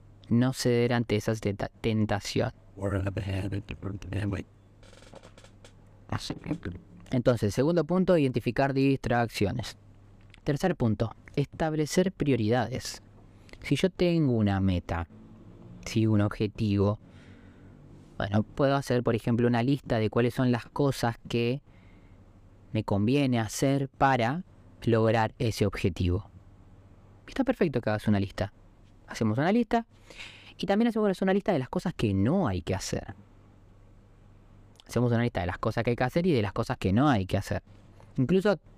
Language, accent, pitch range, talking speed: Spanish, Argentinian, 100-140 Hz, 130 wpm